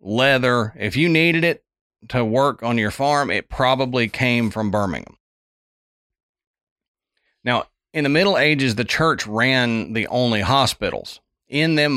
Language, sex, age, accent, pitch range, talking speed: English, male, 40-59, American, 105-130 Hz, 140 wpm